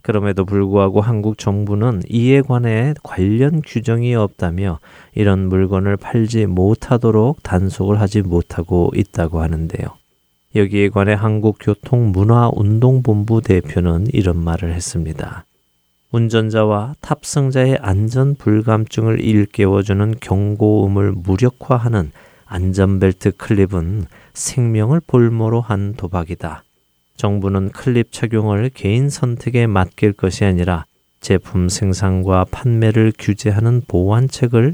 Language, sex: Korean, male